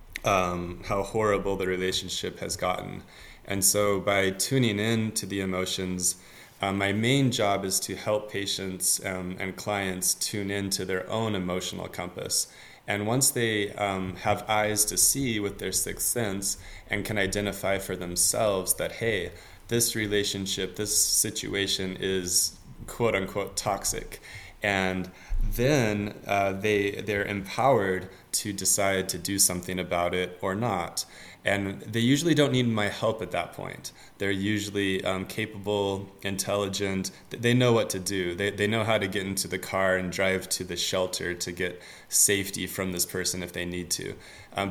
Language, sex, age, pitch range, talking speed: English, male, 20-39, 90-105 Hz, 160 wpm